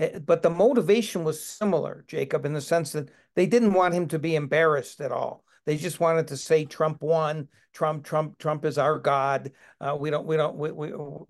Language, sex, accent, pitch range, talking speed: English, male, American, 150-180 Hz, 195 wpm